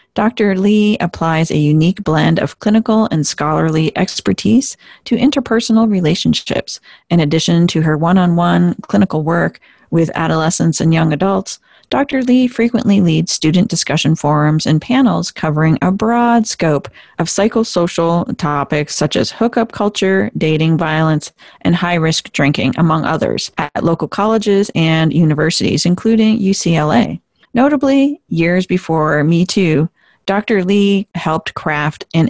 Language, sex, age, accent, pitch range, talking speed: English, female, 30-49, American, 160-210 Hz, 135 wpm